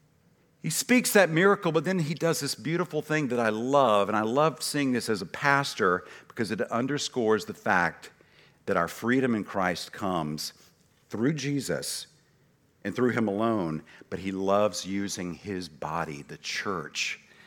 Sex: male